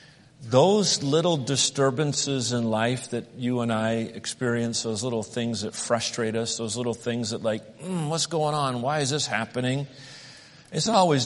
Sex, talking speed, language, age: male, 170 wpm, English, 50-69